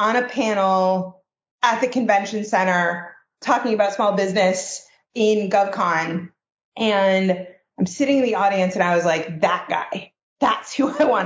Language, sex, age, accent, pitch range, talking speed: English, female, 30-49, American, 180-220 Hz, 155 wpm